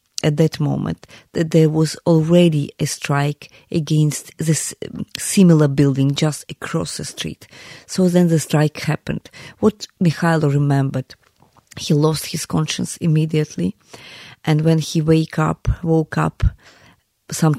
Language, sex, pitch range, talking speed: English, female, 145-165 Hz, 130 wpm